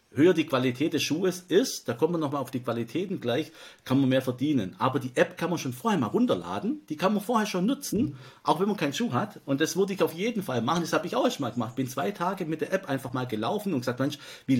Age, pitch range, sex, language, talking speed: 50-69, 125-160 Hz, male, German, 275 wpm